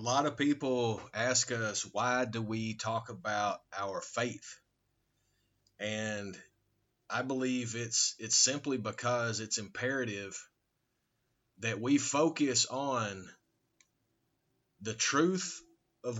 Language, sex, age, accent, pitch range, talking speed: English, male, 30-49, American, 115-140 Hz, 105 wpm